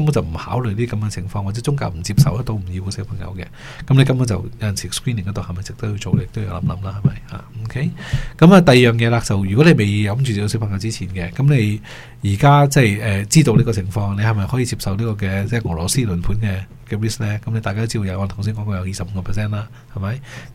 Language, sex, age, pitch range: Chinese, male, 20-39, 100-120 Hz